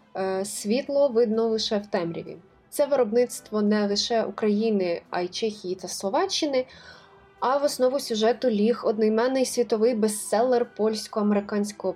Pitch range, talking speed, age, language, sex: 195-250 Hz, 120 wpm, 20-39, Ukrainian, female